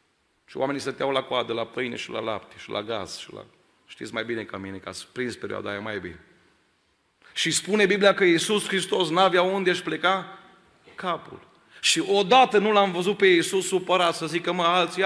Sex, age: male, 40-59